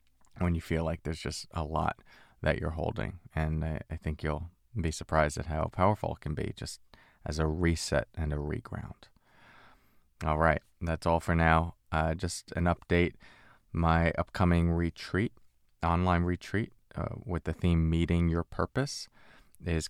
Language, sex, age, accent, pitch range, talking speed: English, male, 30-49, American, 75-85 Hz, 165 wpm